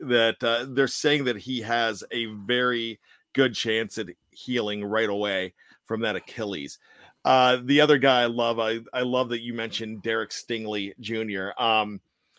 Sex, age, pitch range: male, 40-59, 110-135 Hz